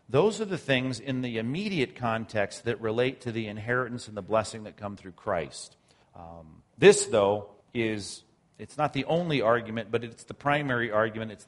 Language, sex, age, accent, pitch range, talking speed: English, male, 40-59, American, 105-130 Hz, 185 wpm